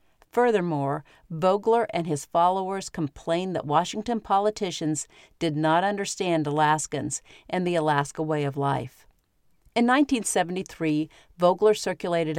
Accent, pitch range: American, 150-185 Hz